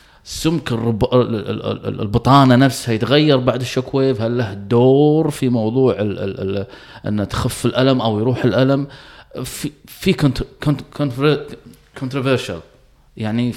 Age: 20-39